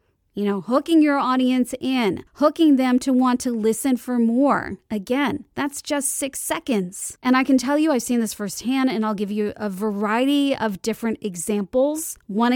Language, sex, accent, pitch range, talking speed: English, female, American, 215-255 Hz, 180 wpm